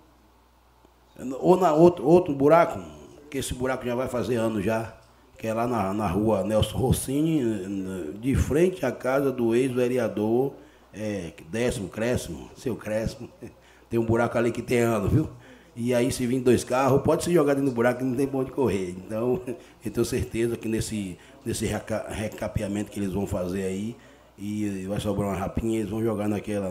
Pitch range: 100-120 Hz